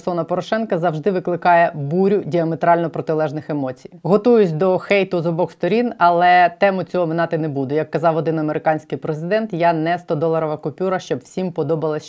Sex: female